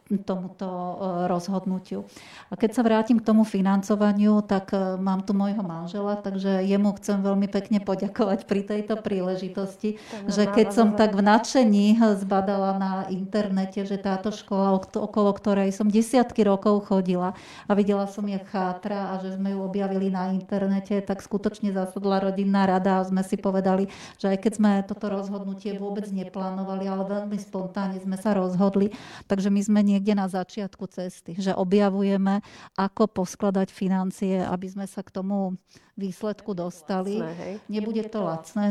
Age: 40-59